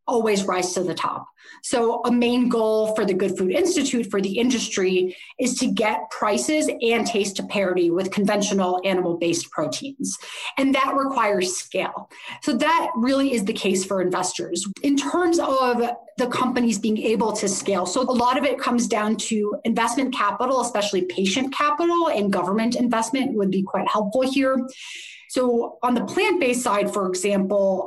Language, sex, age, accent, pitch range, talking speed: English, female, 30-49, American, 195-255 Hz, 170 wpm